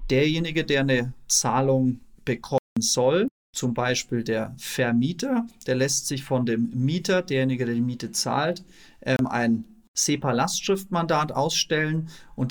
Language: German